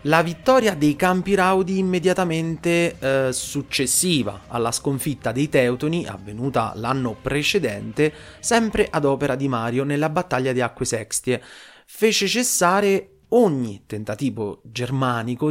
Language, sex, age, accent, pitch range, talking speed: Italian, male, 30-49, native, 120-170 Hz, 115 wpm